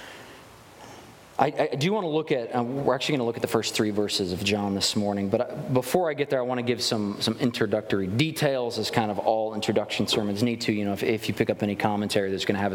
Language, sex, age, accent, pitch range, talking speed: English, male, 20-39, American, 125-170 Hz, 270 wpm